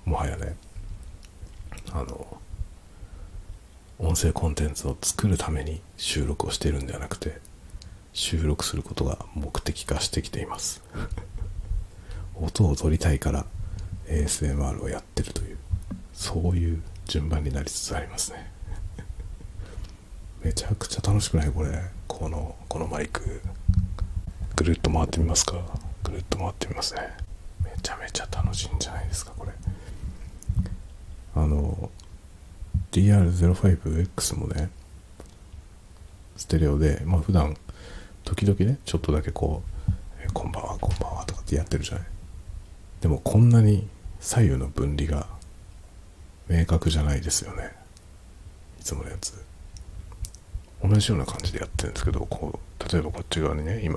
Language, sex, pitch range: Japanese, male, 80-95 Hz